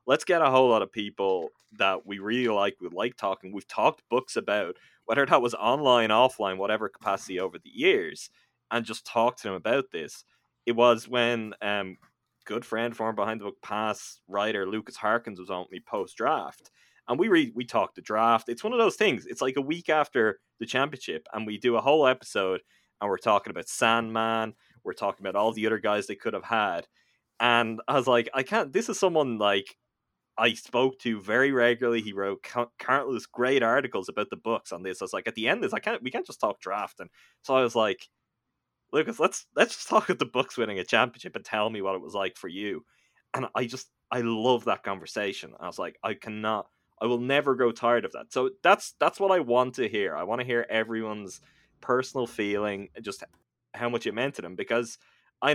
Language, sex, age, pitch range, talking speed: English, male, 20-39, 105-125 Hz, 215 wpm